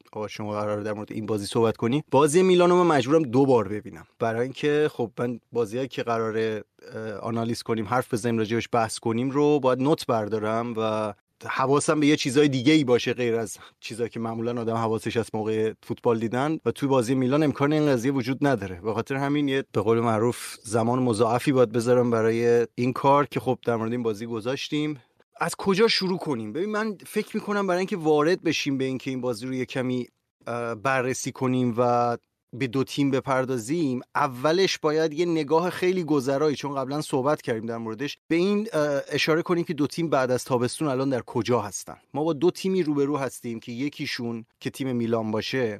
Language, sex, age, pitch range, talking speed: Persian, male, 30-49, 115-145 Hz, 190 wpm